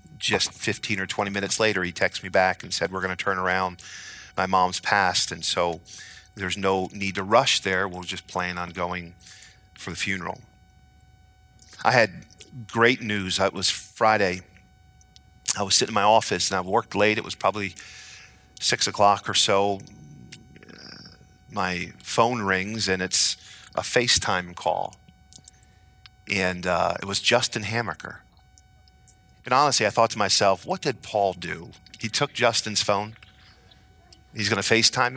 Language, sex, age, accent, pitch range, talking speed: English, male, 40-59, American, 95-115 Hz, 155 wpm